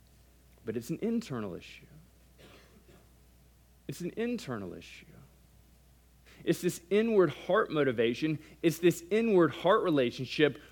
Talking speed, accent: 105 wpm, American